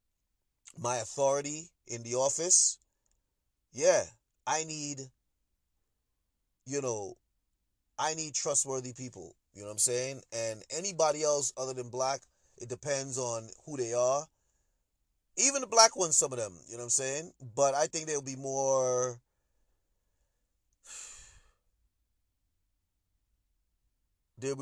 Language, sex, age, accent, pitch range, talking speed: English, male, 30-49, American, 90-130 Hz, 120 wpm